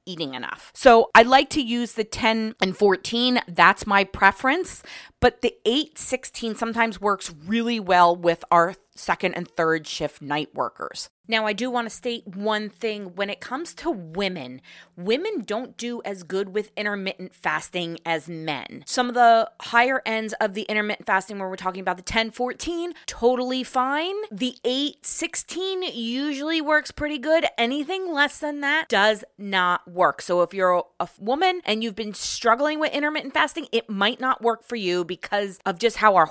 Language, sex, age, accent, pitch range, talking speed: English, female, 20-39, American, 190-255 Hz, 175 wpm